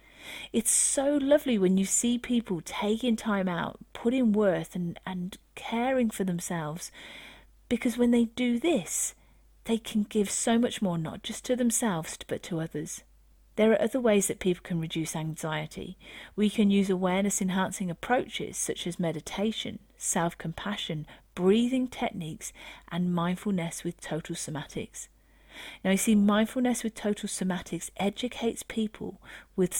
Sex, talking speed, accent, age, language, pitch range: female, 145 wpm, British, 40-59, English, 175-230 Hz